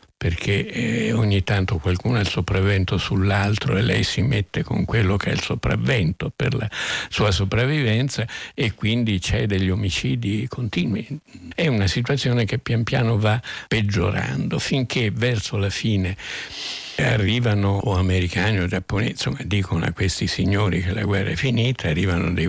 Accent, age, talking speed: native, 60-79, 150 wpm